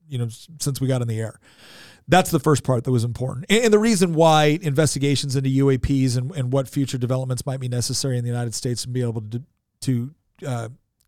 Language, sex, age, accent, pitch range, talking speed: English, male, 40-59, American, 130-165 Hz, 215 wpm